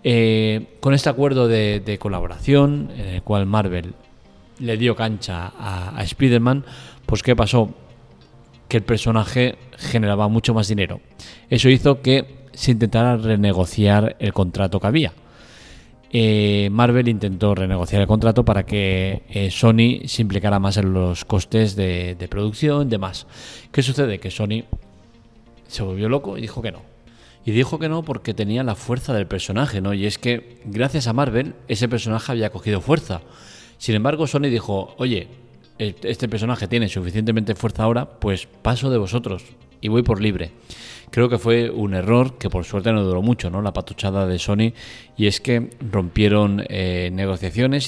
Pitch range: 100-120 Hz